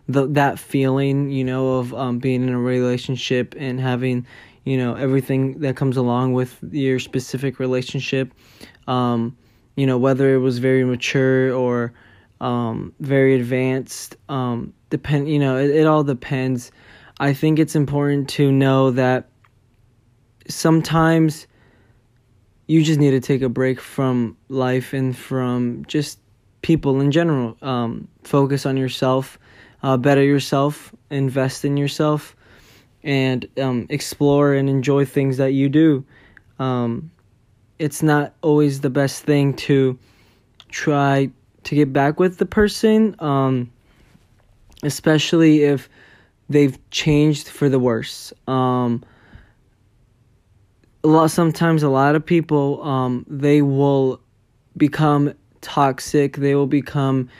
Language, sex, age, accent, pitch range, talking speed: English, male, 20-39, American, 120-140 Hz, 130 wpm